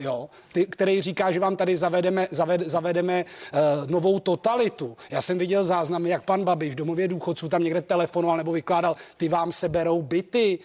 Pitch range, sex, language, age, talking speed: 165-185 Hz, male, Czech, 30-49, 185 wpm